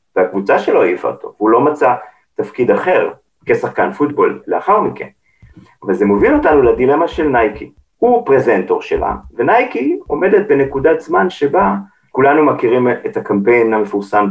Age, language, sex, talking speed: 40-59, Hebrew, male, 140 wpm